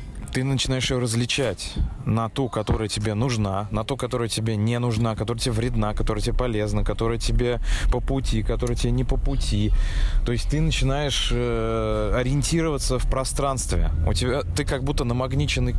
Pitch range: 105-135 Hz